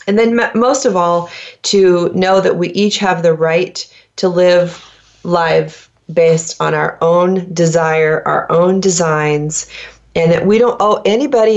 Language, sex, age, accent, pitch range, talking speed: English, female, 30-49, American, 160-205 Hz, 155 wpm